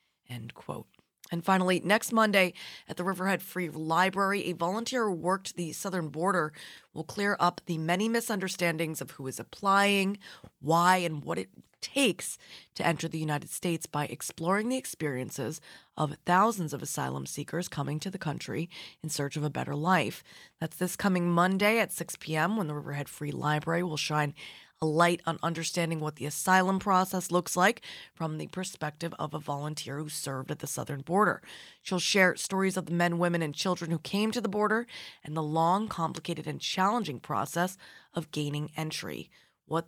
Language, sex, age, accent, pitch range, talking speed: English, female, 20-39, American, 155-190 Hz, 180 wpm